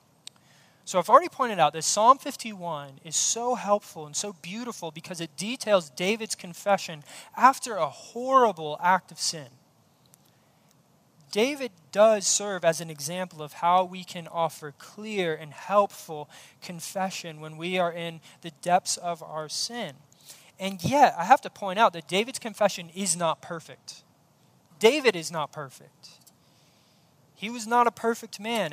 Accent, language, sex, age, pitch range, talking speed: American, English, male, 20-39, 155-210 Hz, 150 wpm